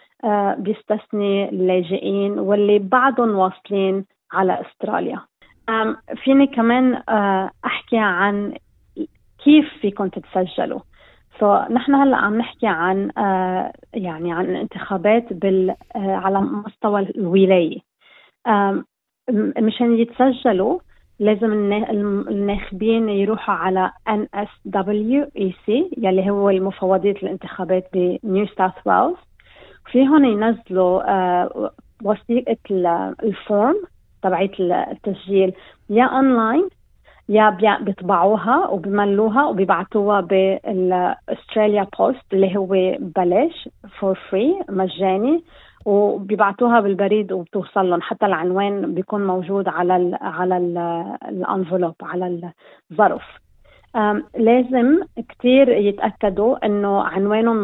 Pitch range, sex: 190-225 Hz, female